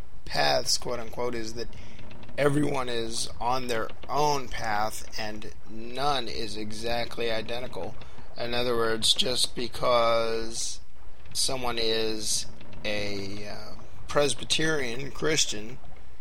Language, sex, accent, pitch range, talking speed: English, male, American, 105-125 Hz, 95 wpm